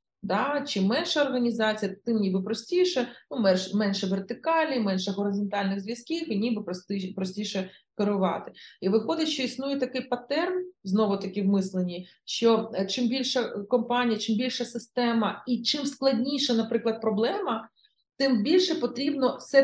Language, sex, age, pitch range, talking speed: Ukrainian, female, 30-49, 200-250 Hz, 135 wpm